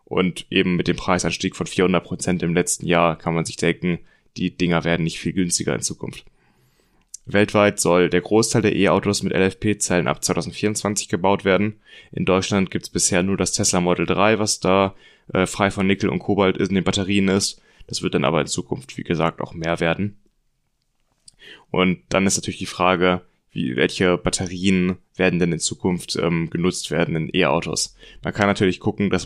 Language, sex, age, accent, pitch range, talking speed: German, male, 20-39, German, 90-100 Hz, 185 wpm